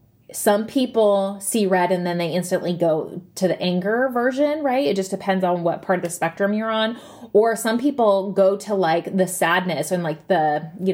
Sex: female